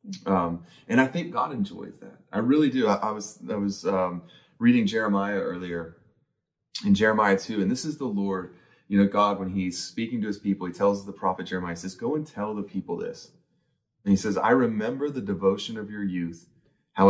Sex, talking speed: male, 205 wpm